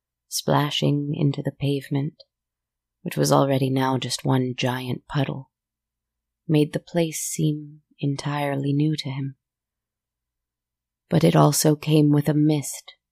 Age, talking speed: 30-49, 125 wpm